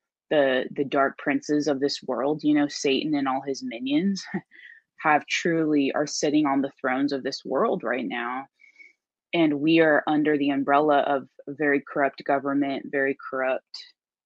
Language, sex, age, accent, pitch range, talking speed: English, female, 20-39, American, 140-165 Hz, 165 wpm